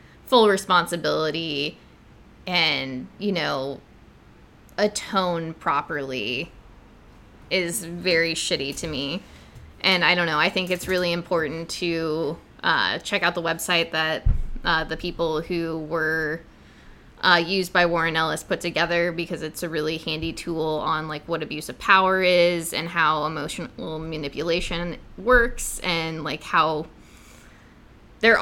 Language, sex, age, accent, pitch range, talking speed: English, female, 10-29, American, 160-180 Hz, 130 wpm